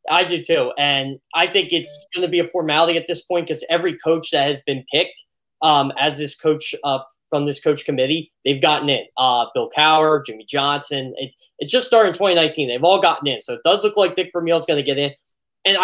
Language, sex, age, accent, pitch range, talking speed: English, male, 20-39, American, 145-185 Hz, 240 wpm